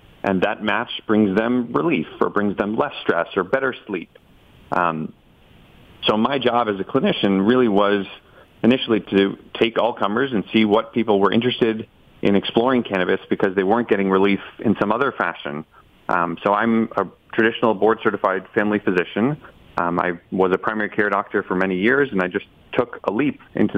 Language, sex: English, male